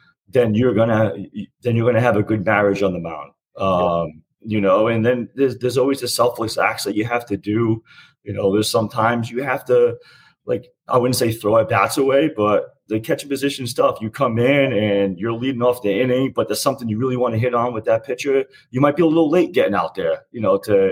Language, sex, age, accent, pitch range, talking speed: English, male, 30-49, American, 105-130 Hz, 230 wpm